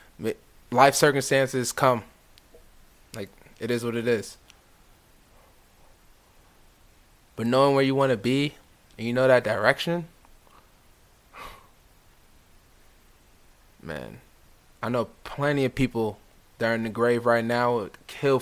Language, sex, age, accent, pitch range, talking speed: English, male, 20-39, American, 100-135 Hz, 115 wpm